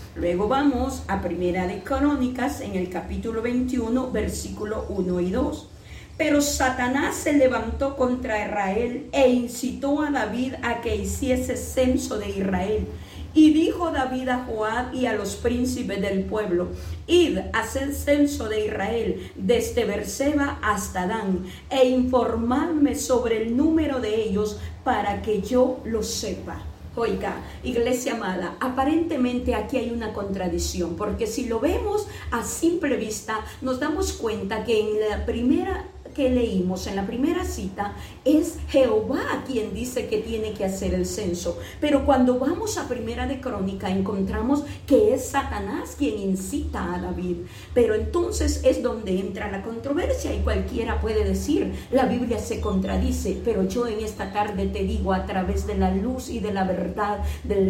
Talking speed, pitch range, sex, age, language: 155 wpm, 195-265 Hz, female, 40-59, Spanish